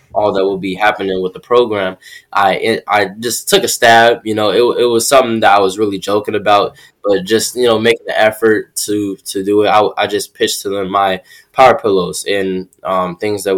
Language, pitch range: English, 95-115 Hz